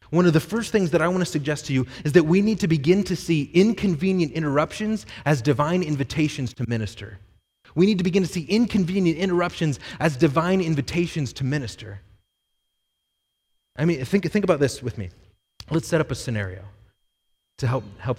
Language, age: English, 30-49